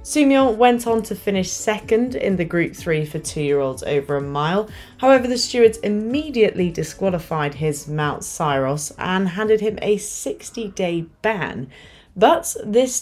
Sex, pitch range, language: female, 165-225 Hz, English